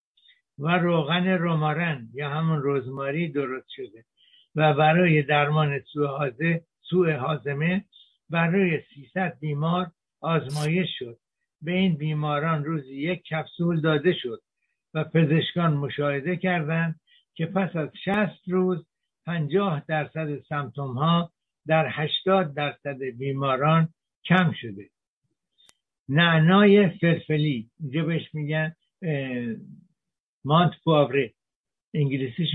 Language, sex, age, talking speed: Persian, male, 60-79, 90 wpm